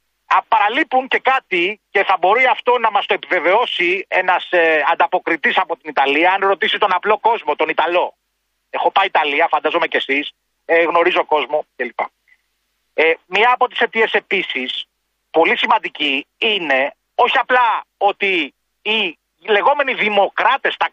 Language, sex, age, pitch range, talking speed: Greek, male, 30-49, 180-245 Hz, 135 wpm